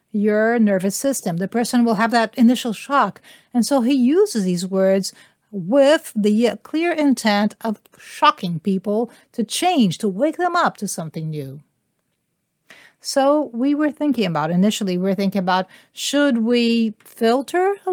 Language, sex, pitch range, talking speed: English, female, 195-275 Hz, 150 wpm